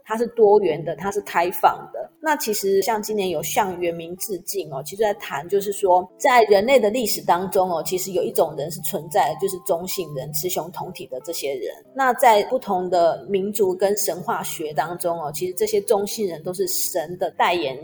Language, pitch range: Chinese, 180-245 Hz